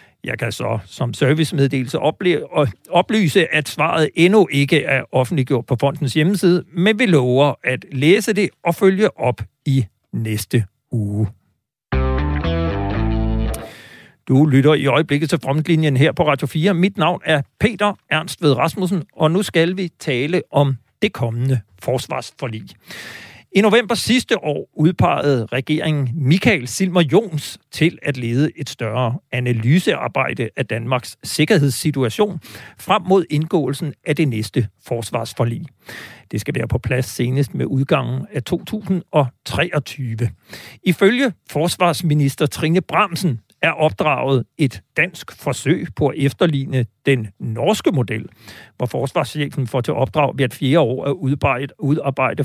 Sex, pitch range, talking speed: male, 125-160 Hz, 130 wpm